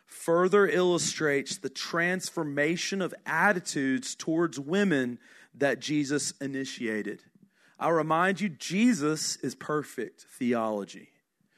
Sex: male